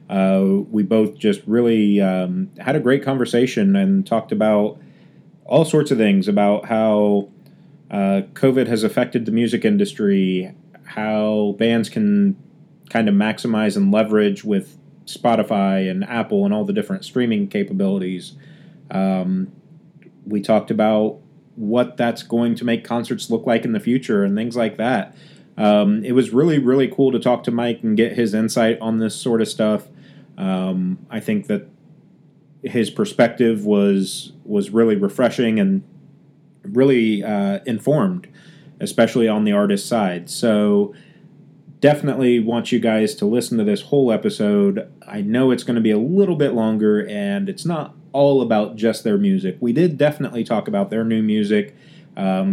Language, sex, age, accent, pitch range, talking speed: English, male, 30-49, American, 110-175 Hz, 160 wpm